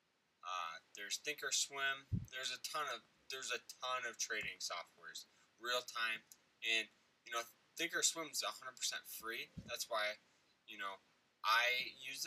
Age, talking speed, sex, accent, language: 10-29, 135 wpm, male, American, English